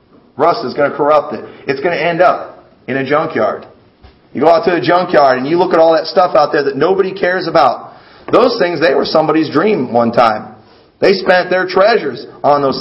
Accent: American